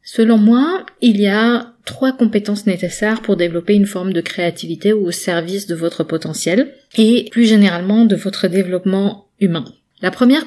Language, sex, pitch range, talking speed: French, female, 190-230 Hz, 160 wpm